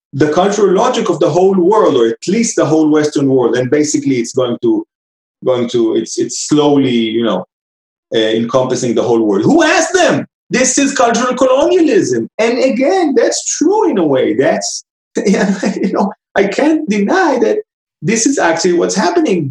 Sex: male